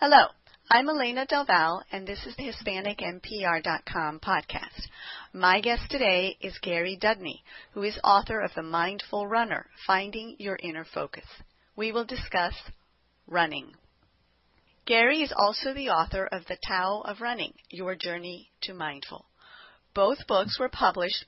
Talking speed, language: 140 wpm, English